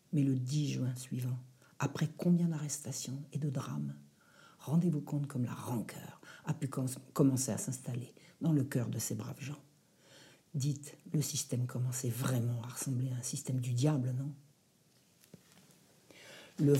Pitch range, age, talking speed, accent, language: 135-180 Hz, 60-79, 150 wpm, French, French